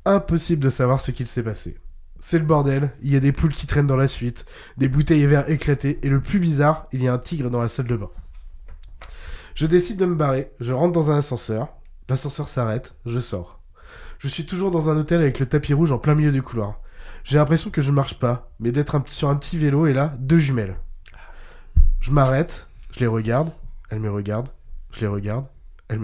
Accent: French